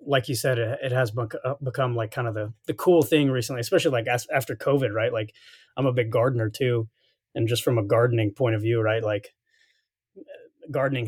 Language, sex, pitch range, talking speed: English, male, 110-130 Hz, 195 wpm